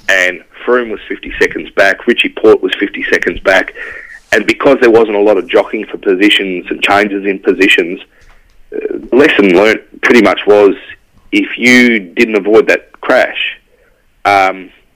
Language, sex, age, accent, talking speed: English, male, 30-49, Australian, 160 wpm